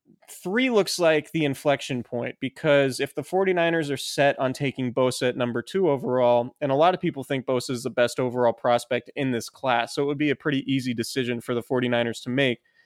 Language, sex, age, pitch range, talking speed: English, male, 20-39, 120-140 Hz, 220 wpm